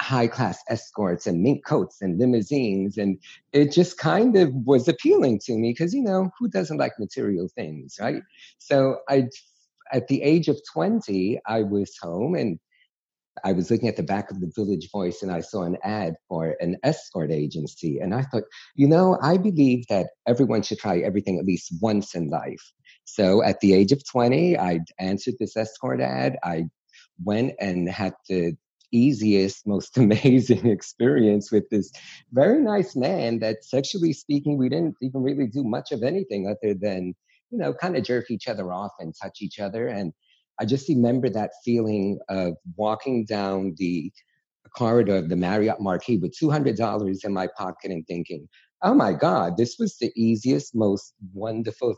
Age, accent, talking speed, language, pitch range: 50-69, American, 175 wpm, English, 95-135 Hz